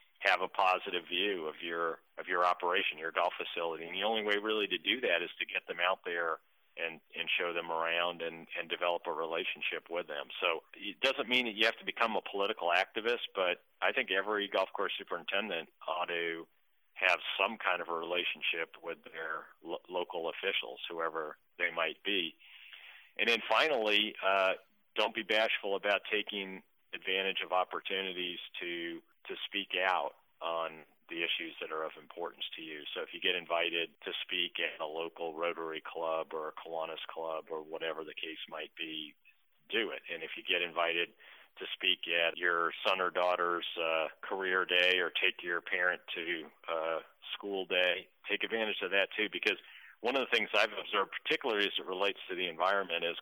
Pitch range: 85-95 Hz